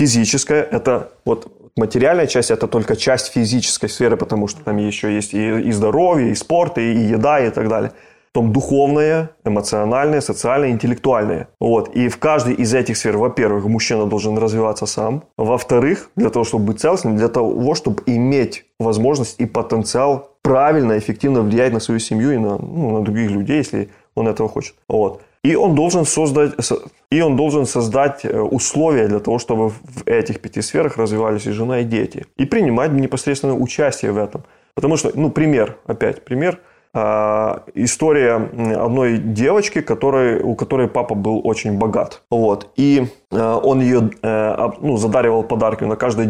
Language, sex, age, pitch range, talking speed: Russian, male, 20-39, 110-135 Hz, 160 wpm